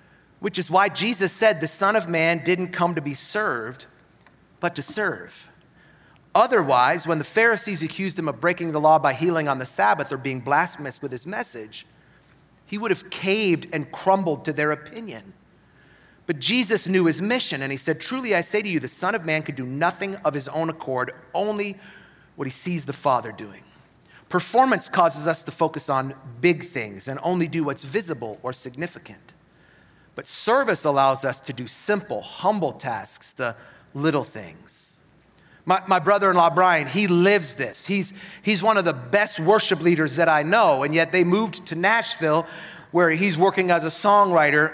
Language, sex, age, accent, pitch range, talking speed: English, male, 40-59, American, 155-200 Hz, 180 wpm